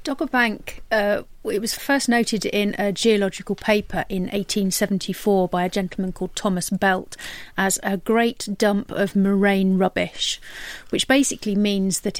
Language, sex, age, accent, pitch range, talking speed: English, female, 40-59, British, 195-220 Hz, 150 wpm